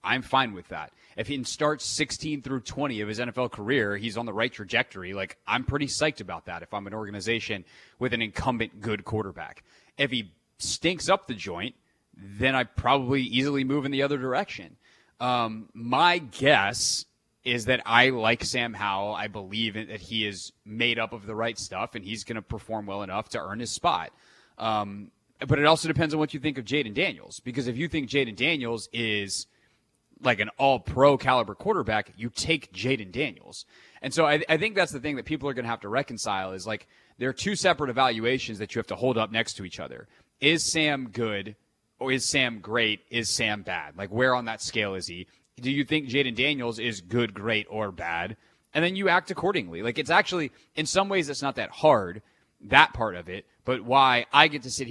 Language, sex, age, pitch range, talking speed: English, male, 30-49, 110-140 Hz, 210 wpm